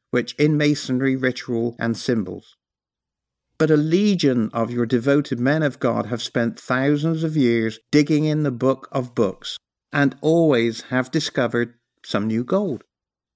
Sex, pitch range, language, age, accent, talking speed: male, 120-155 Hz, English, 50-69, British, 150 wpm